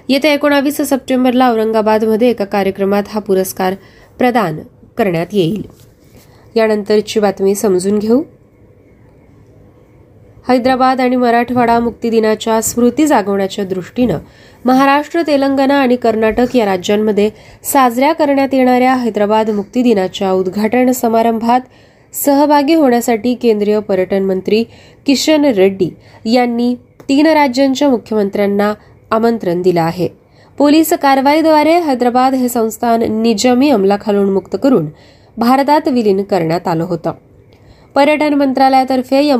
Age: 20-39